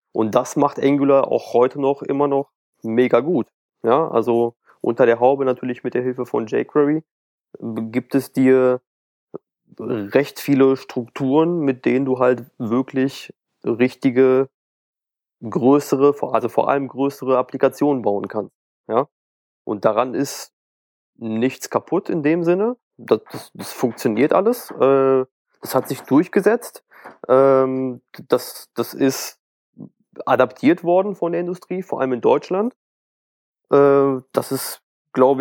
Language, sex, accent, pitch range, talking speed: German, male, German, 125-145 Hz, 125 wpm